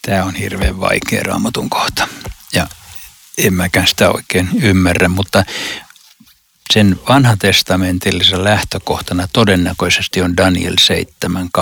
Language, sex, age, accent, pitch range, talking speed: Finnish, male, 60-79, native, 90-100 Hz, 100 wpm